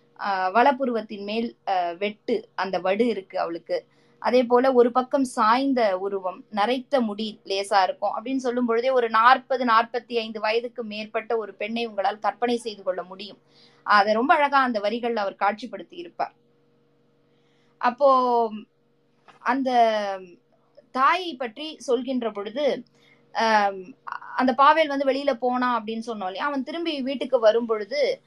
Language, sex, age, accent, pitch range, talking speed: Tamil, female, 20-39, native, 215-270 Hz, 125 wpm